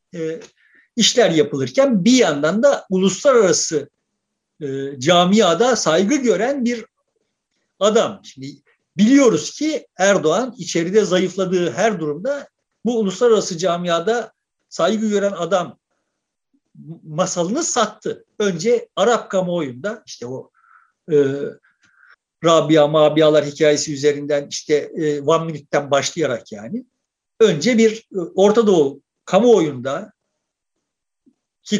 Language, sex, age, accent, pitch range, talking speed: Turkish, male, 50-69, native, 165-235 Hz, 100 wpm